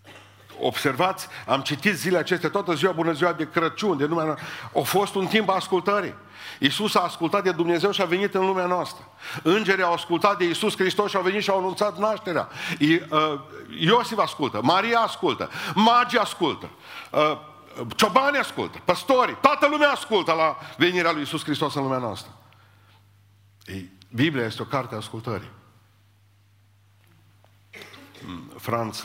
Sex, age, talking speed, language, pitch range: male, 50-69, 145 wpm, Romanian, 100-160 Hz